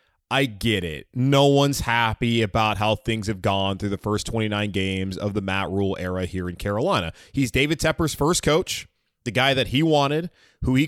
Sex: male